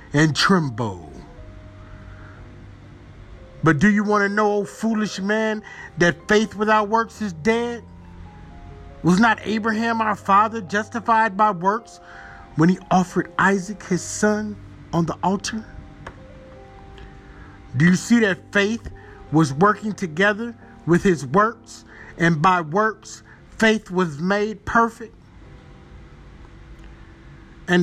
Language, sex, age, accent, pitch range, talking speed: English, male, 50-69, American, 140-210 Hz, 110 wpm